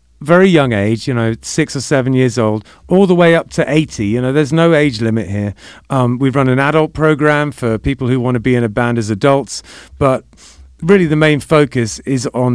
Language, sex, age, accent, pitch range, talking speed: English, male, 40-59, British, 110-145 Hz, 225 wpm